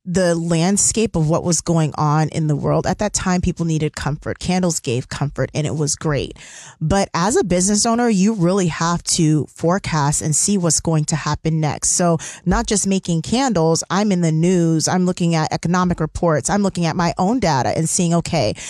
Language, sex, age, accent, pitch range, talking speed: English, female, 20-39, American, 160-195 Hz, 200 wpm